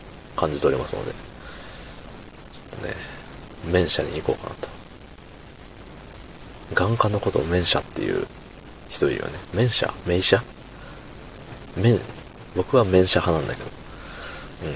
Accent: native